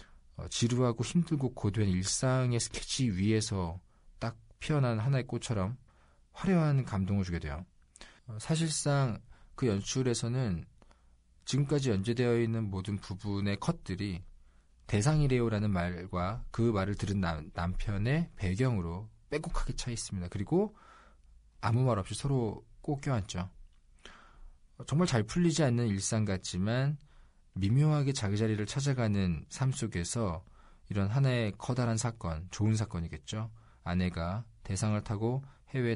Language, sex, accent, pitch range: Korean, male, native, 90-125 Hz